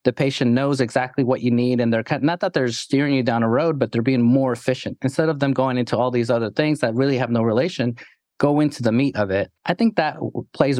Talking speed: 255 wpm